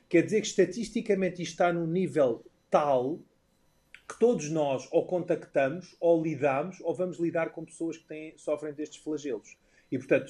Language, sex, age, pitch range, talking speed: Portuguese, male, 30-49, 130-165 Hz, 165 wpm